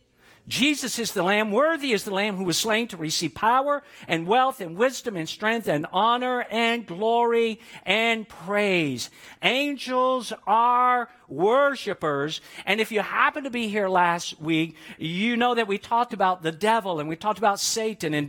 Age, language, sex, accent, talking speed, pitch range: 50-69, English, male, American, 170 wpm, 170-235 Hz